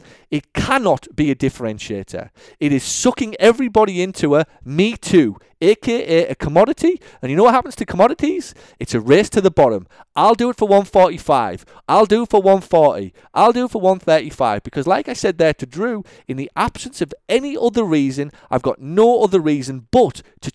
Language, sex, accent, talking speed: English, male, British, 190 wpm